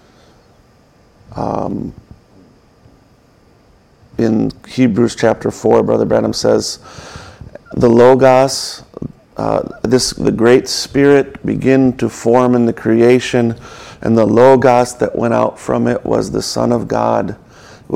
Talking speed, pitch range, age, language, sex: 115 wpm, 110-130 Hz, 40-59, English, male